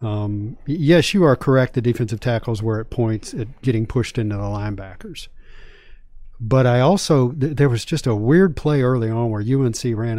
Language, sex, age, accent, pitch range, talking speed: English, male, 40-59, American, 110-135 Hz, 185 wpm